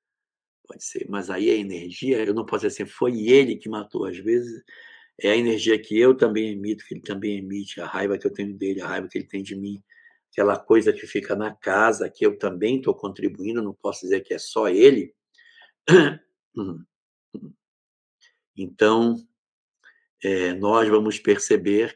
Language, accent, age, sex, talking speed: Portuguese, Brazilian, 60-79, male, 175 wpm